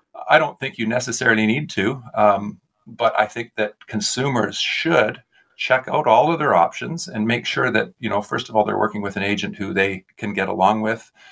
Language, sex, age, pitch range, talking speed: English, male, 40-59, 100-115 Hz, 210 wpm